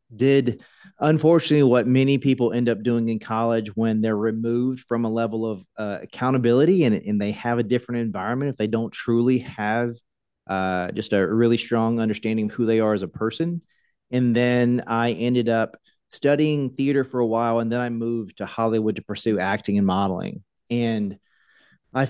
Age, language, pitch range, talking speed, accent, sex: 30-49, English, 105-125 Hz, 180 wpm, American, male